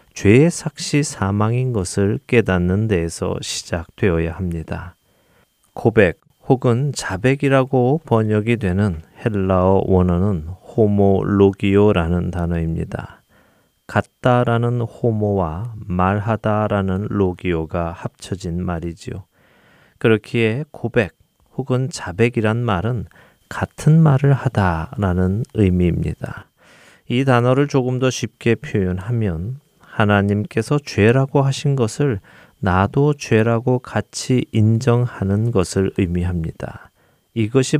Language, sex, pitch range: Korean, male, 95-125 Hz